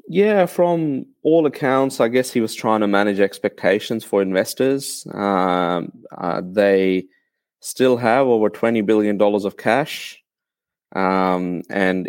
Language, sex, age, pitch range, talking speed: English, male, 30-49, 95-105 Hz, 135 wpm